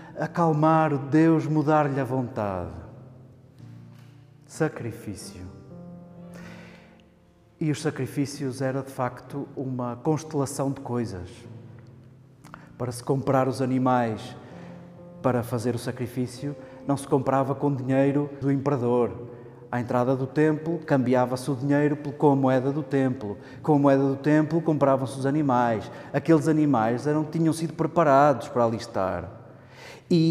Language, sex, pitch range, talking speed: Portuguese, male, 130-160 Hz, 125 wpm